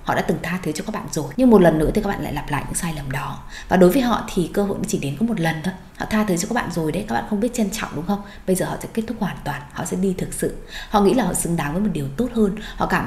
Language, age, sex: Vietnamese, 20-39, female